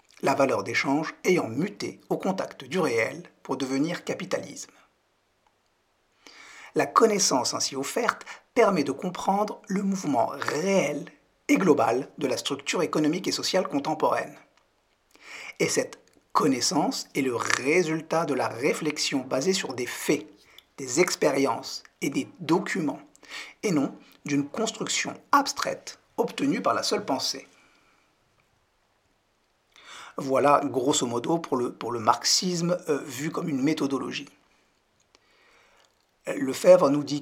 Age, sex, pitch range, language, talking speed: 50-69, male, 135-170 Hz, French, 120 wpm